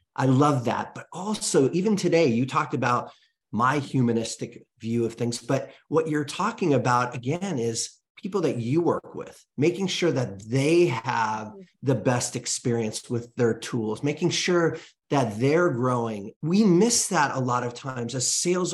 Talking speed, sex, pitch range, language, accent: 165 wpm, male, 130-175 Hz, English, American